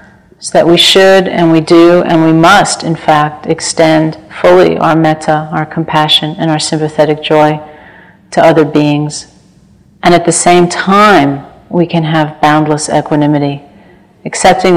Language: English